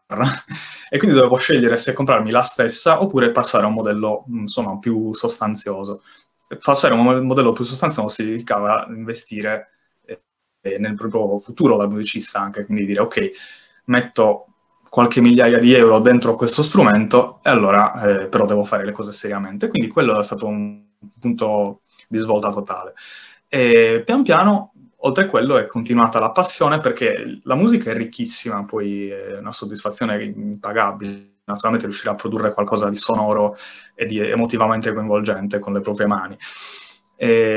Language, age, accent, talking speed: Italian, 20-39, native, 150 wpm